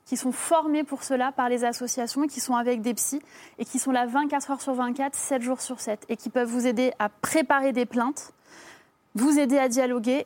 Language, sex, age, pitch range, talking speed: French, female, 20-39, 240-275 Hz, 220 wpm